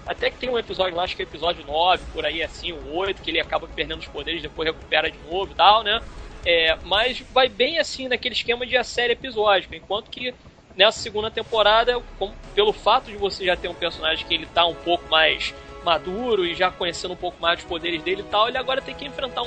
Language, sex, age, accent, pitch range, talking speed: Portuguese, male, 20-39, Brazilian, 175-245 Hz, 235 wpm